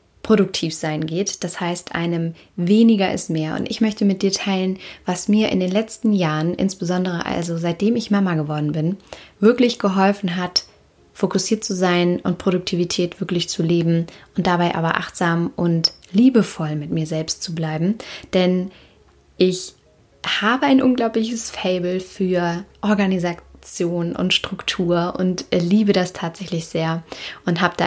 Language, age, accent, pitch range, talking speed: German, 20-39, German, 175-205 Hz, 145 wpm